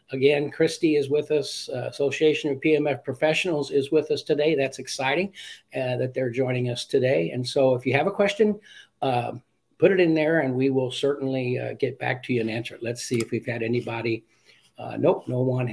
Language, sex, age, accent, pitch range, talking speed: English, male, 50-69, American, 125-150 Hz, 215 wpm